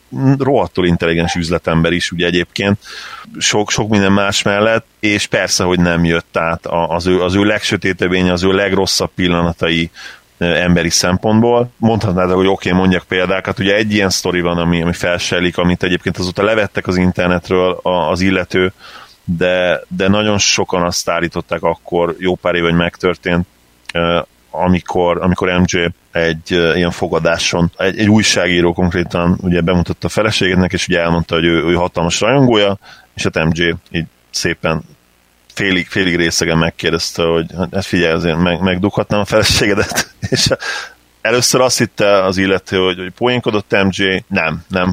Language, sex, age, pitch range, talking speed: Hungarian, male, 30-49, 85-95 Hz, 150 wpm